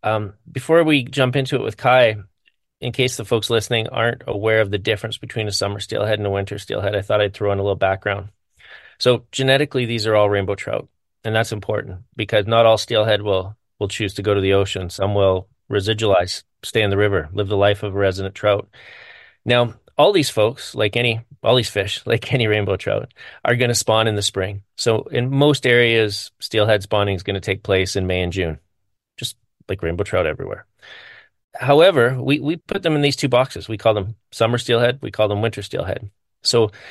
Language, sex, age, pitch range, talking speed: English, male, 30-49, 100-120 Hz, 210 wpm